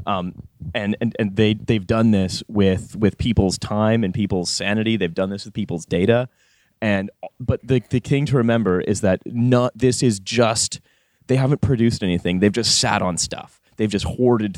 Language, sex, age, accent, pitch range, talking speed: English, male, 20-39, American, 95-115 Hz, 190 wpm